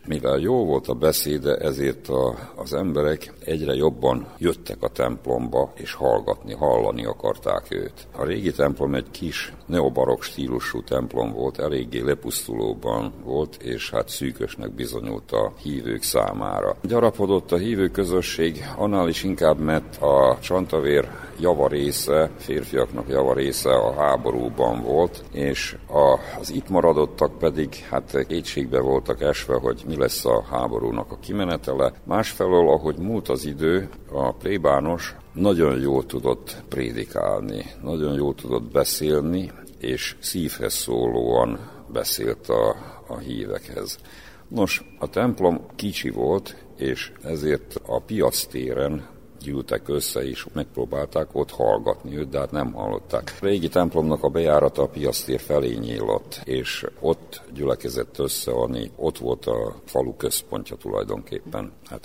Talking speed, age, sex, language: 130 wpm, 50-69, male, Hungarian